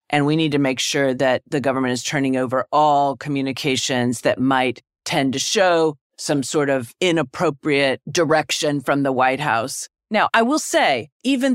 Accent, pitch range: American, 140-195 Hz